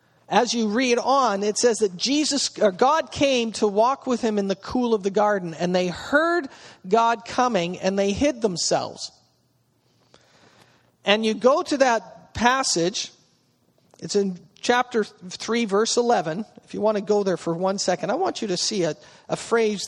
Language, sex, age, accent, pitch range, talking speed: English, male, 40-59, American, 185-235 Hz, 180 wpm